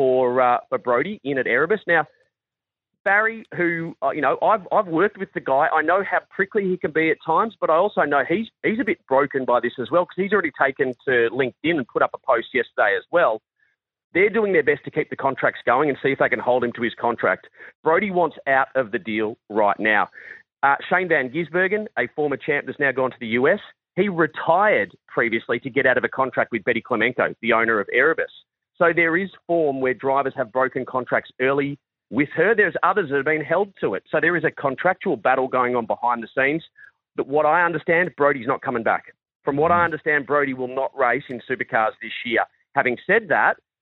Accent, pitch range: Australian, 130-180 Hz